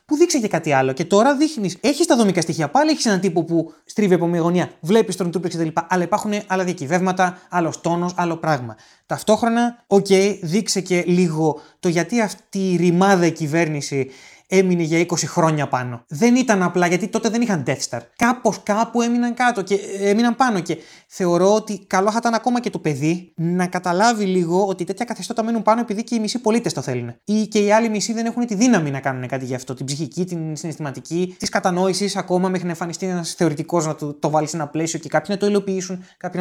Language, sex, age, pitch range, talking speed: Greek, male, 20-39, 165-215 Hz, 215 wpm